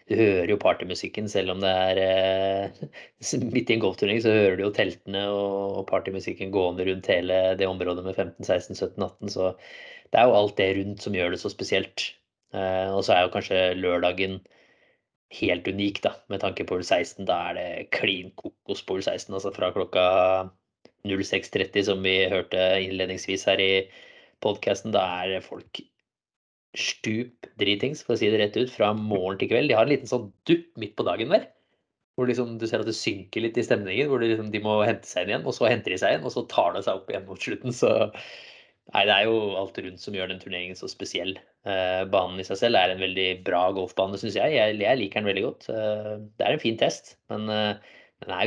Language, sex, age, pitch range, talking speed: English, male, 20-39, 95-105 Hz, 220 wpm